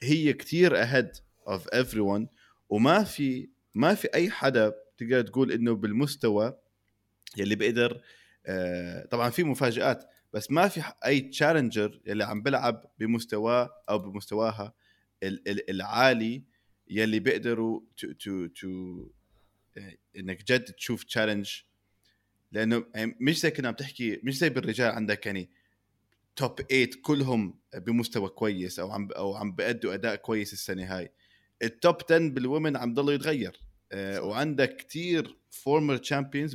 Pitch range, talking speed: 105-135 Hz, 125 wpm